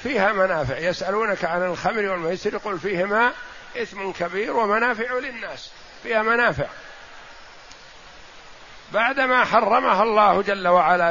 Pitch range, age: 190-230 Hz, 50-69